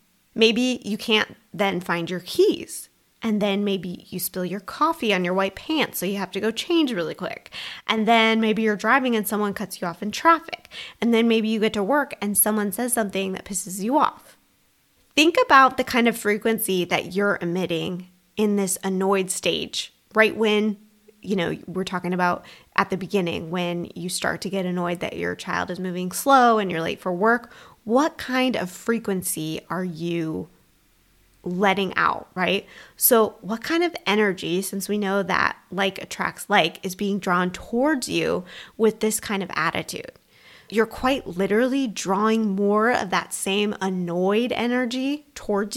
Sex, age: female, 20-39